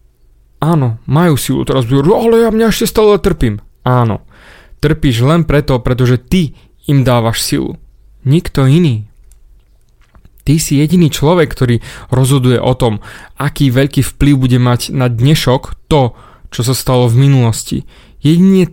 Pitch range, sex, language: 125-170 Hz, male, Slovak